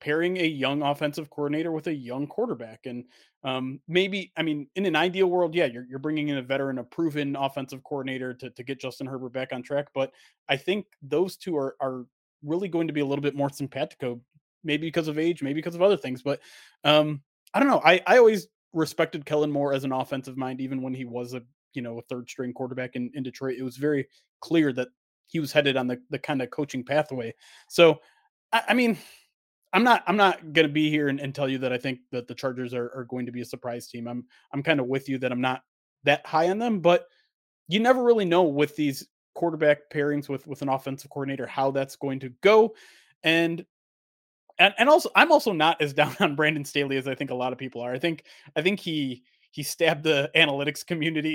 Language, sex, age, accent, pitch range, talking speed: English, male, 30-49, American, 130-160 Hz, 230 wpm